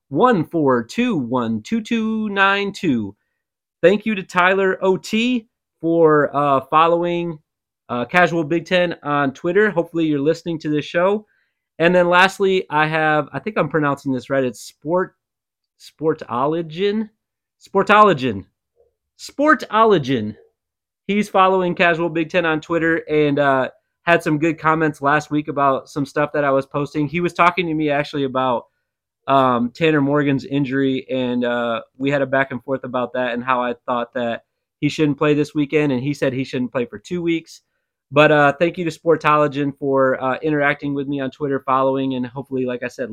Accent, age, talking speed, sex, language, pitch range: American, 30-49, 175 wpm, male, English, 140-185 Hz